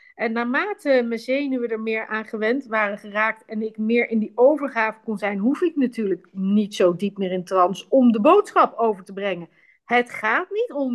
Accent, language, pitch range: Dutch, Dutch, 210-280 Hz